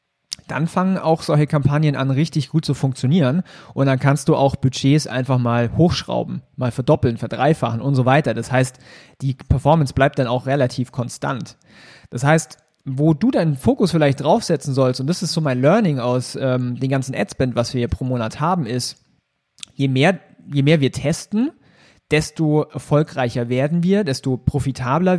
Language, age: German, 30-49